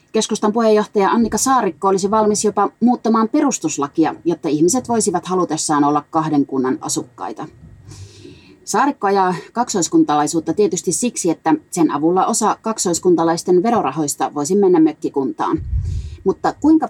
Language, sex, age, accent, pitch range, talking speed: Finnish, female, 30-49, native, 160-235 Hz, 115 wpm